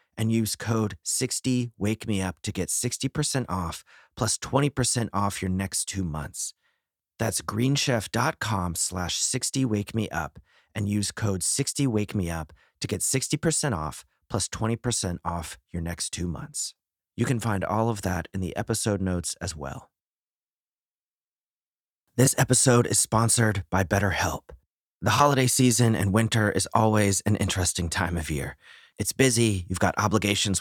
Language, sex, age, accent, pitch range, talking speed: English, male, 30-49, American, 90-115 Hz, 155 wpm